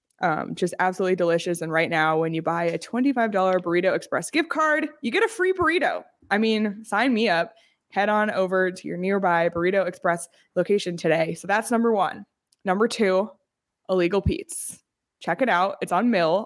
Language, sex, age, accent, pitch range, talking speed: English, female, 20-39, American, 175-225 Hz, 180 wpm